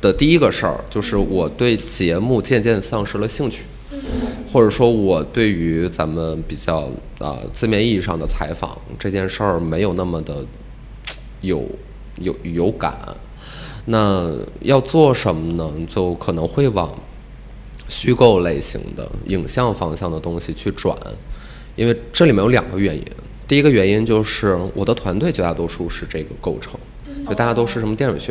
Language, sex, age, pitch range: English, male, 20-39, 90-125 Hz